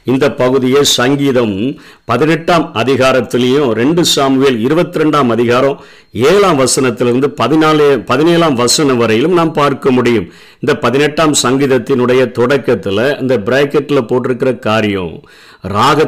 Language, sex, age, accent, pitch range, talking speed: Tamil, male, 50-69, native, 120-150 Hz, 100 wpm